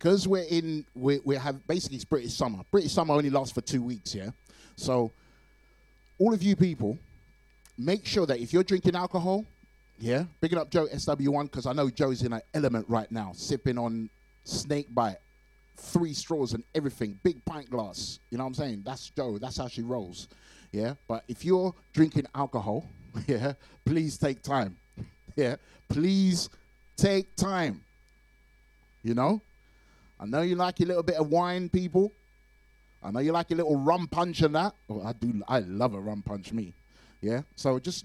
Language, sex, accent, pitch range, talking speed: English, male, British, 120-180 Hz, 180 wpm